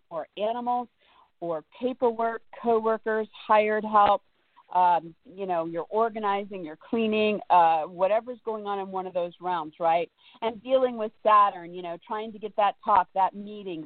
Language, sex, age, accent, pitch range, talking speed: English, female, 50-69, American, 175-225 Hz, 160 wpm